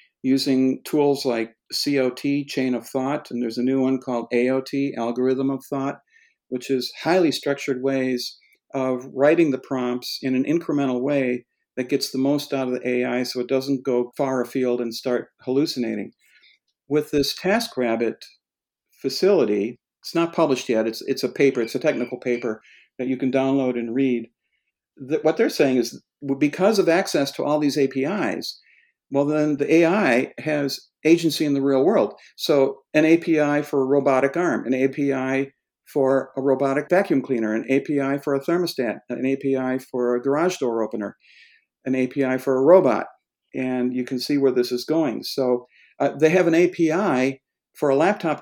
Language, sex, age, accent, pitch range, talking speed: English, male, 60-79, American, 125-150 Hz, 170 wpm